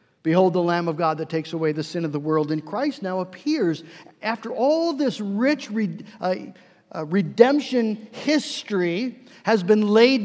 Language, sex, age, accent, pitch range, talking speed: English, male, 50-69, American, 185-255 Hz, 170 wpm